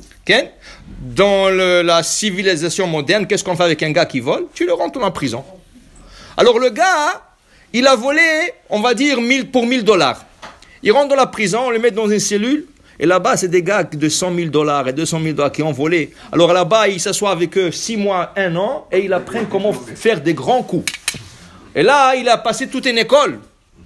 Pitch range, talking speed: 190-290 Hz, 220 wpm